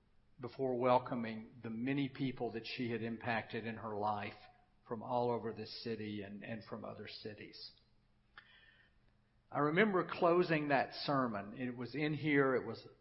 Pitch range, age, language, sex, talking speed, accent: 110-135 Hz, 50-69, English, male, 150 wpm, American